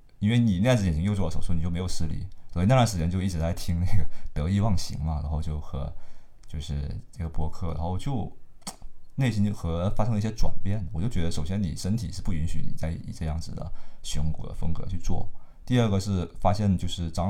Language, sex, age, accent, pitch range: Chinese, male, 20-39, native, 80-100 Hz